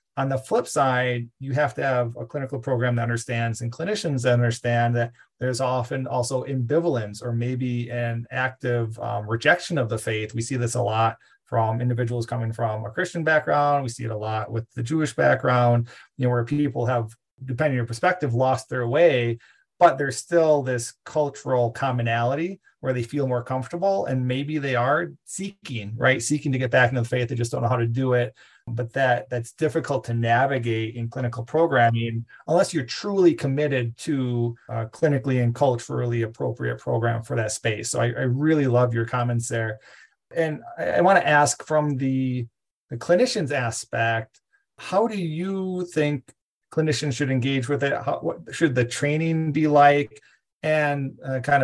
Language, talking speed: English, 180 wpm